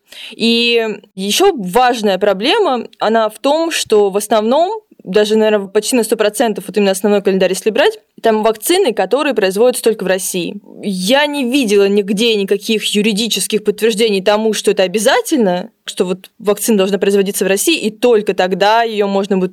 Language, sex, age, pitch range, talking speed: Russian, female, 20-39, 200-235 Hz, 160 wpm